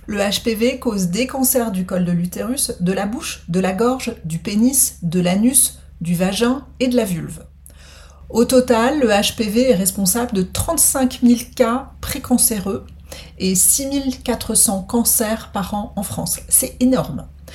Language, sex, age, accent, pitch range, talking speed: French, female, 40-59, French, 175-245 Hz, 155 wpm